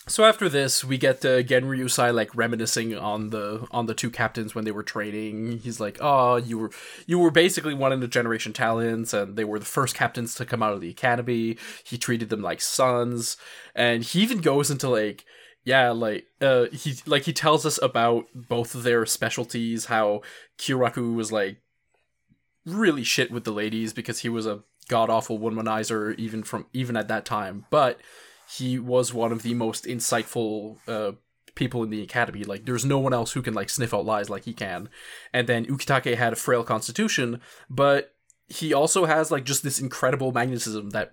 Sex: male